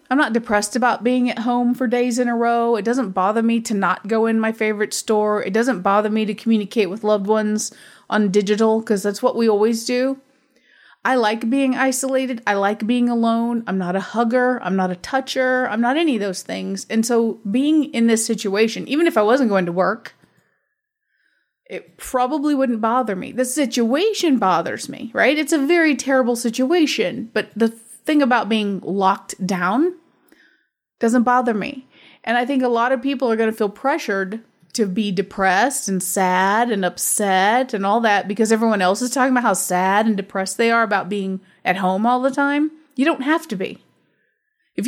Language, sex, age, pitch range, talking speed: English, female, 30-49, 205-255 Hz, 195 wpm